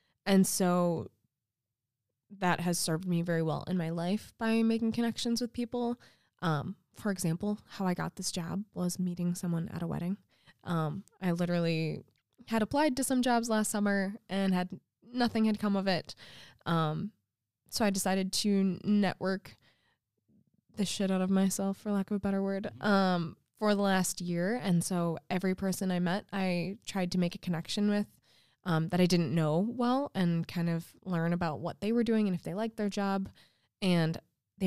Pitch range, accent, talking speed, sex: 170-210 Hz, American, 180 wpm, female